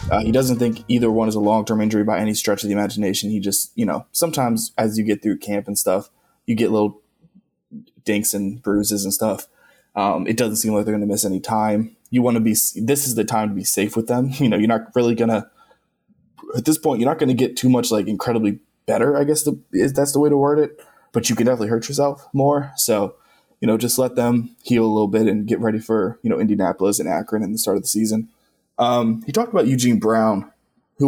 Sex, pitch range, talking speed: male, 110-125 Hz, 240 wpm